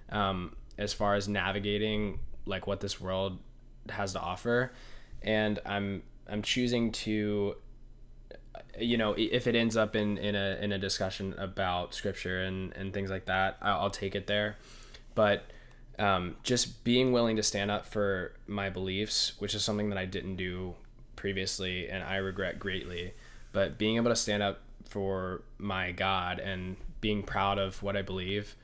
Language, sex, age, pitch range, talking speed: English, male, 10-29, 95-105 Hz, 165 wpm